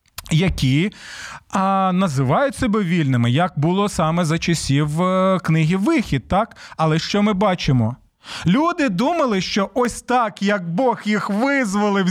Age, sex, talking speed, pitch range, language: 30-49, male, 130 wpm, 155-220 Hz, Ukrainian